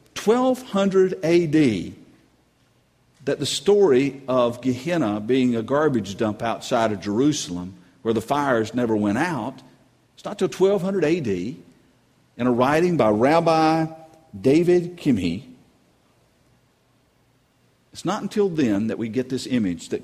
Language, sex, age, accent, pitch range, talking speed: English, male, 50-69, American, 115-160 Hz, 125 wpm